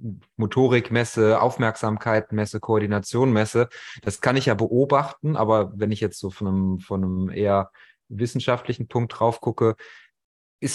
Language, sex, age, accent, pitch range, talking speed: German, male, 30-49, German, 110-135 Hz, 135 wpm